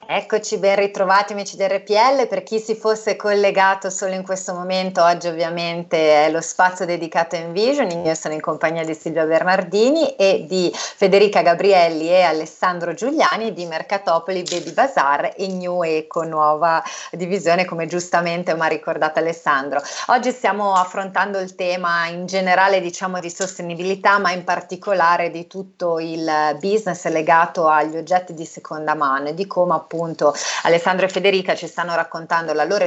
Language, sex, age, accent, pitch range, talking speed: Italian, female, 30-49, native, 160-190 Hz, 160 wpm